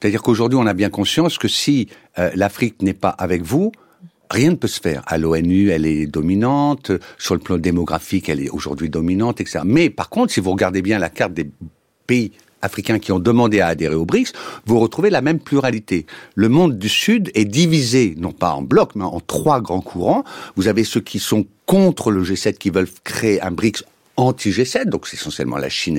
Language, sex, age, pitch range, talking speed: French, male, 60-79, 90-125 Hz, 210 wpm